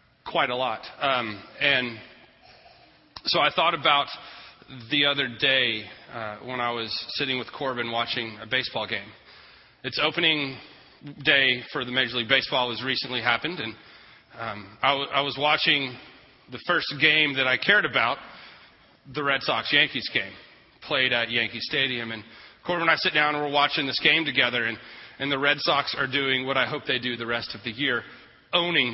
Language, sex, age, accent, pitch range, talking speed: English, male, 30-49, American, 125-155 Hz, 175 wpm